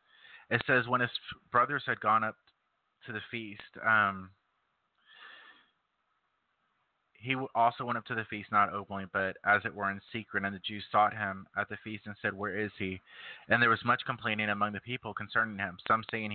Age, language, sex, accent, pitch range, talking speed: 30-49, English, male, American, 100-115 Hz, 190 wpm